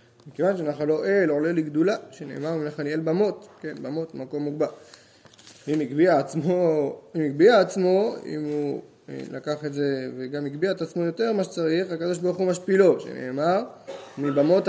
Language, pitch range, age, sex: Hebrew, 135-175 Hz, 20-39, male